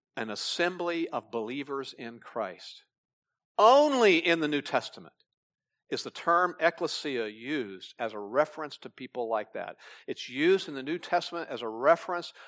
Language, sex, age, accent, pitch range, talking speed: English, male, 50-69, American, 130-200 Hz, 155 wpm